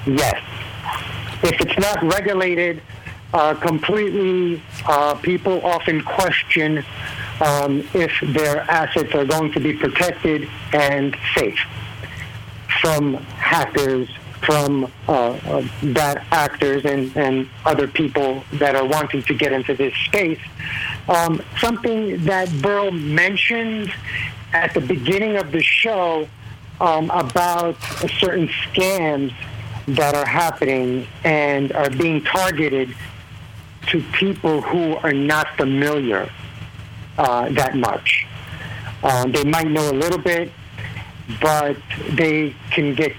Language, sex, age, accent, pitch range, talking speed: English, male, 60-79, American, 130-170 Hz, 115 wpm